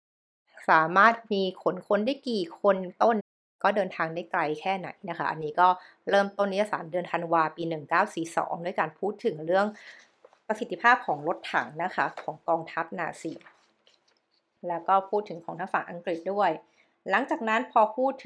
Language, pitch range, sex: Thai, 165-205 Hz, female